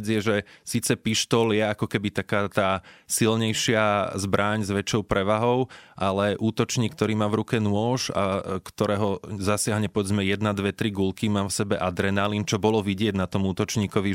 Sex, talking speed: male, 165 wpm